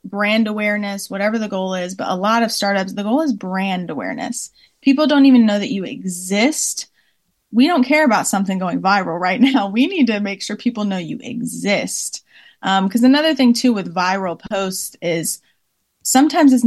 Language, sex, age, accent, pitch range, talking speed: English, female, 20-39, American, 190-235 Hz, 185 wpm